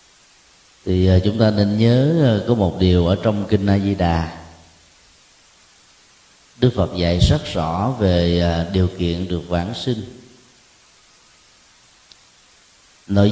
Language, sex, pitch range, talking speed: Vietnamese, male, 90-125 Hz, 110 wpm